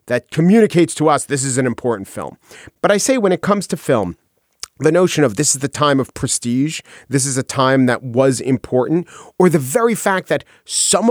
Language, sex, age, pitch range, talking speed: English, male, 40-59, 135-210 Hz, 210 wpm